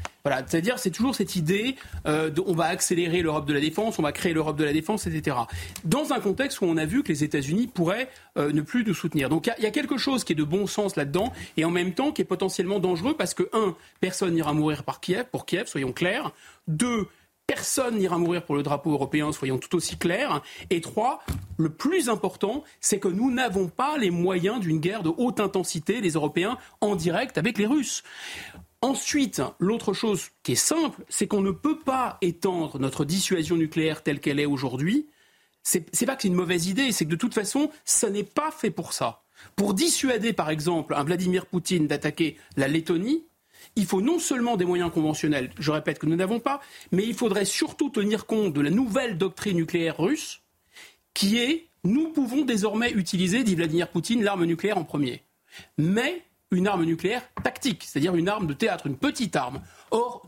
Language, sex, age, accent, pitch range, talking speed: French, male, 40-59, French, 165-235 Hz, 210 wpm